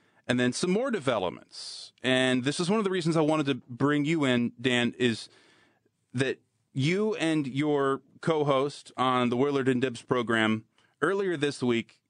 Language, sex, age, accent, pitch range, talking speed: English, male, 30-49, American, 120-150 Hz, 170 wpm